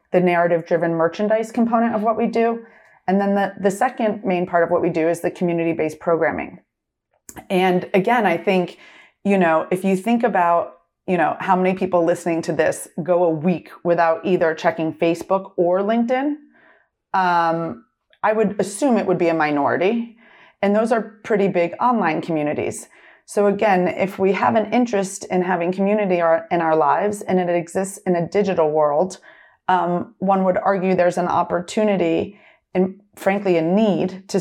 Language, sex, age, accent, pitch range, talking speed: English, female, 30-49, American, 175-215 Hz, 170 wpm